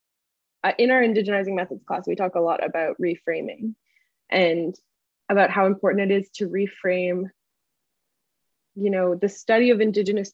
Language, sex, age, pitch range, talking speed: English, female, 20-39, 185-220 Hz, 150 wpm